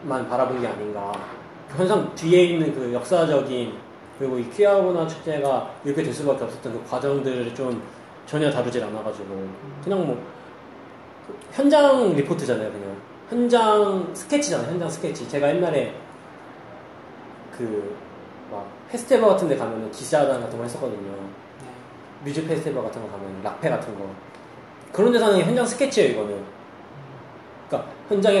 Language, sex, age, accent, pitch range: Korean, male, 30-49, native, 120-185 Hz